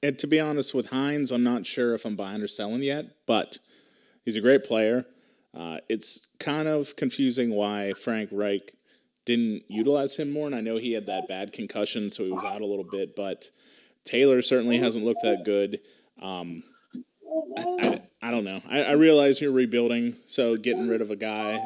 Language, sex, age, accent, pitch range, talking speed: English, male, 30-49, American, 105-140 Hz, 195 wpm